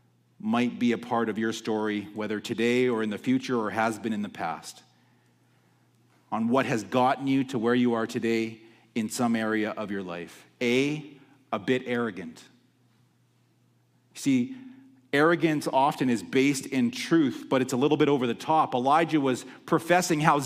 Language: English